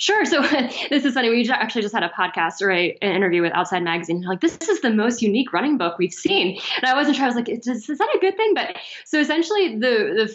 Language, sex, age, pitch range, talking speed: English, female, 10-29, 185-255 Hz, 255 wpm